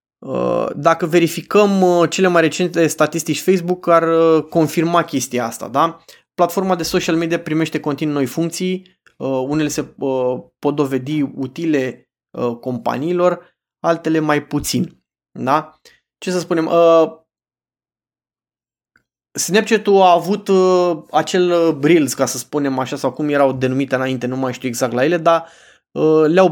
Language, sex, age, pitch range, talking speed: Romanian, male, 20-39, 140-175 Hz, 125 wpm